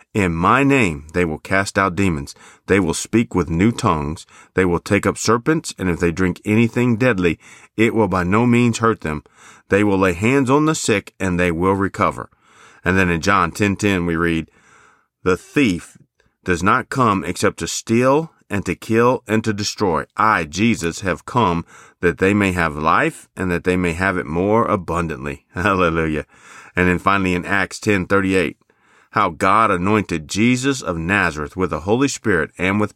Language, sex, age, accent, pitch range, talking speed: English, male, 40-59, American, 90-110 Hz, 185 wpm